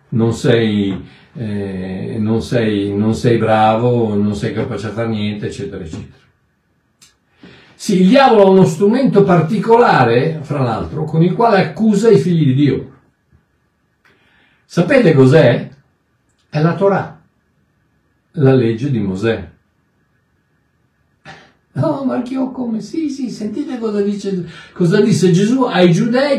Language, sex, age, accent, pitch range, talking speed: Italian, male, 60-79, native, 125-195 Hz, 130 wpm